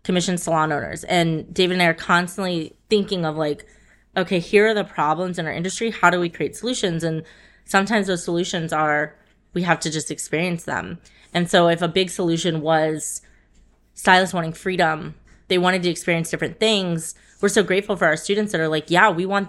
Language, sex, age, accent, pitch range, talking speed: English, female, 20-39, American, 165-195 Hz, 195 wpm